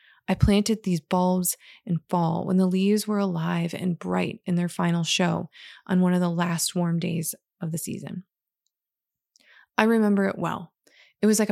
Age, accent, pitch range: 20-39, American, 180-205 Hz